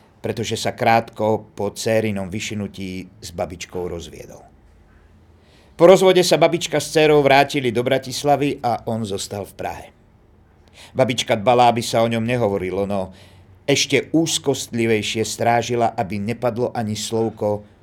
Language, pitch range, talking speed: Slovak, 95-120 Hz, 130 wpm